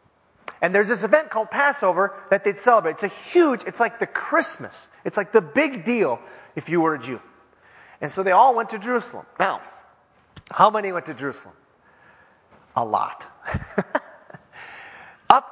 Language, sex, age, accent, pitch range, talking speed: English, male, 30-49, American, 190-275 Hz, 160 wpm